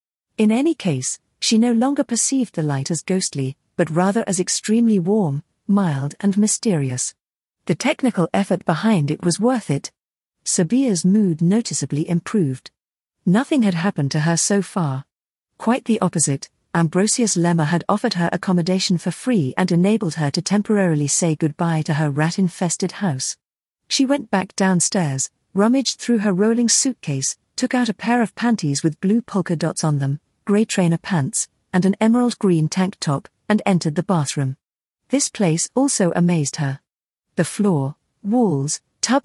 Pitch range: 160-215 Hz